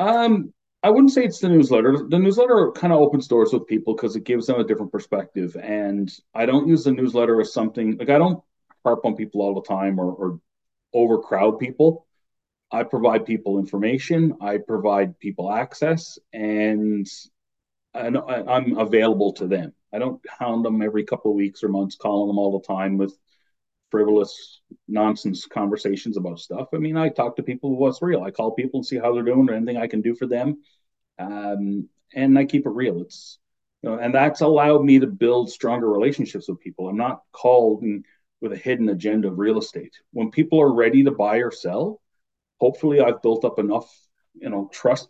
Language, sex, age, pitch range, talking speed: English, male, 40-59, 100-135 Hz, 195 wpm